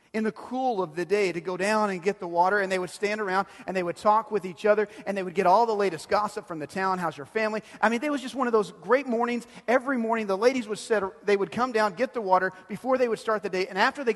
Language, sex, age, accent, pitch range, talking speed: English, male, 40-59, American, 165-225 Hz, 295 wpm